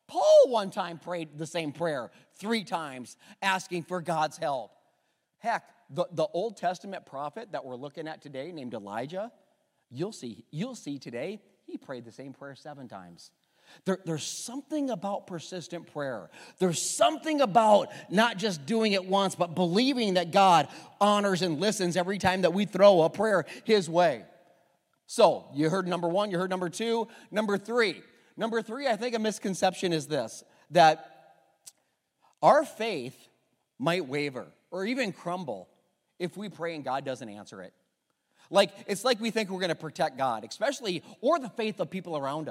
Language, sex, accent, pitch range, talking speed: English, male, American, 145-205 Hz, 165 wpm